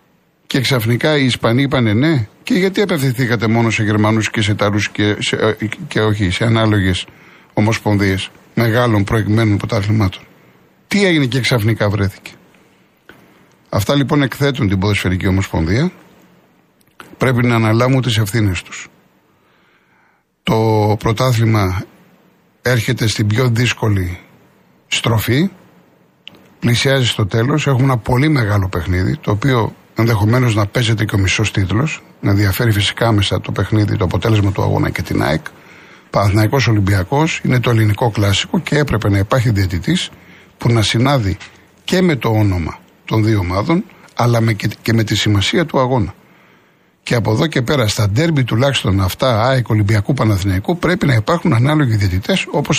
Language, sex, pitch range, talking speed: Greek, male, 105-135 Hz, 140 wpm